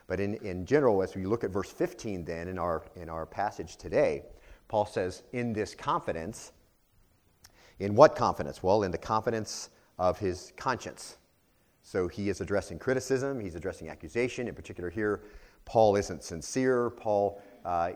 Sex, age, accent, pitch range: male, 40-59, American, 85-110 Hz